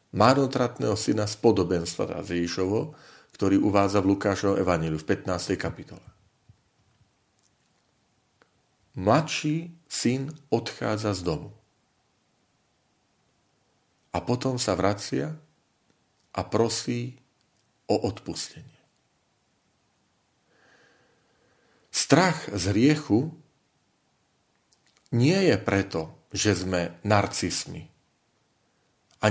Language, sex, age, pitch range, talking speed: Slovak, male, 40-59, 95-120 Hz, 70 wpm